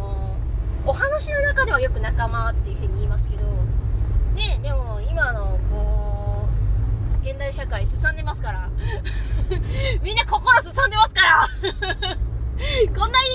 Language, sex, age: Japanese, female, 20-39